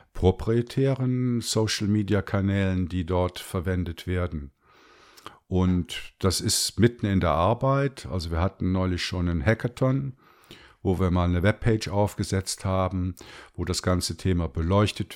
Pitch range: 85-95 Hz